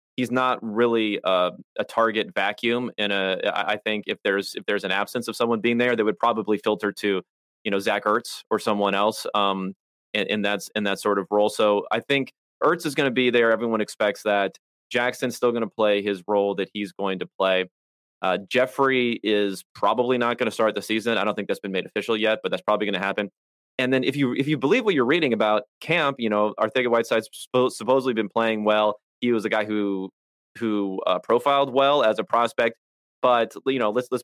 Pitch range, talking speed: 105-125 Hz, 225 wpm